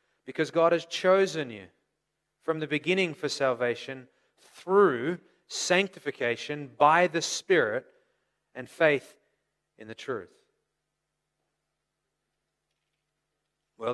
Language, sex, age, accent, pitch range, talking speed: English, male, 30-49, Australian, 115-150 Hz, 90 wpm